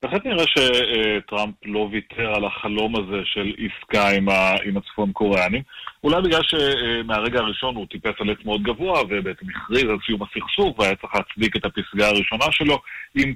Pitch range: 100-125 Hz